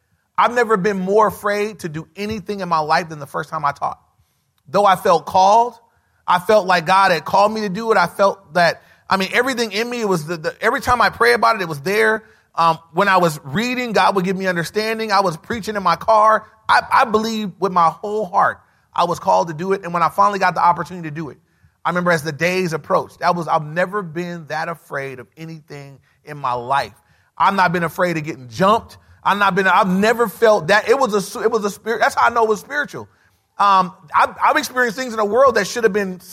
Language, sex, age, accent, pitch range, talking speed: English, male, 30-49, American, 160-215 Hz, 245 wpm